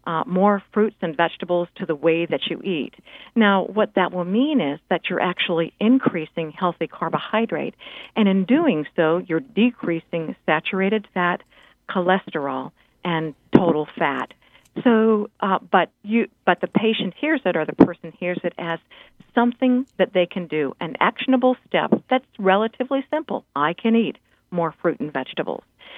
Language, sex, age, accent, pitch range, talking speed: English, female, 50-69, American, 170-230 Hz, 155 wpm